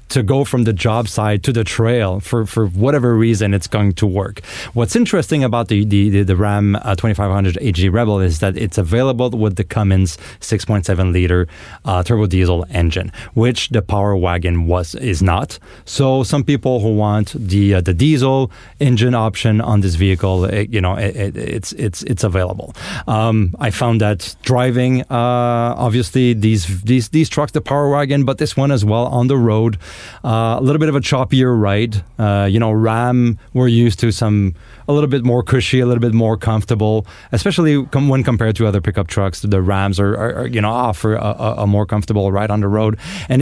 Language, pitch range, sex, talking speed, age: English, 100-125 Hz, male, 200 wpm, 30-49